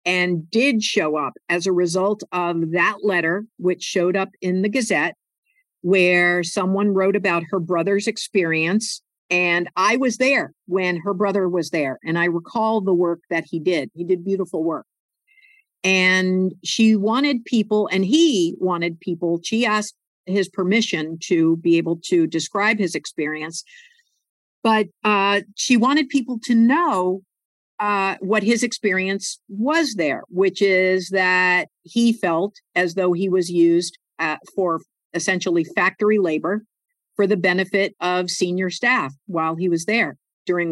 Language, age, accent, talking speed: English, 50-69, American, 150 wpm